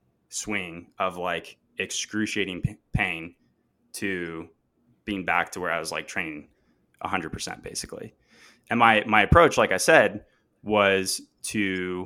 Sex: male